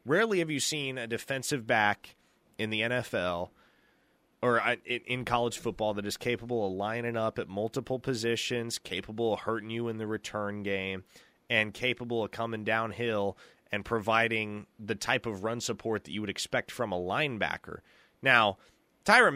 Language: English